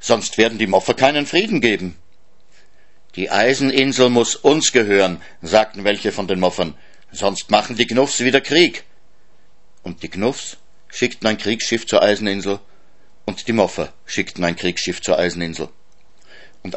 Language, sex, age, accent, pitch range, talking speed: German, male, 60-79, German, 95-130 Hz, 145 wpm